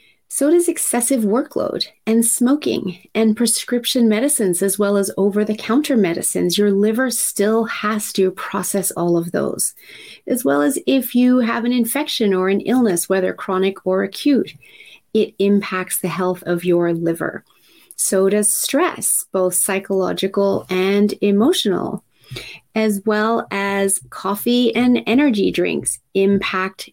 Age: 30-49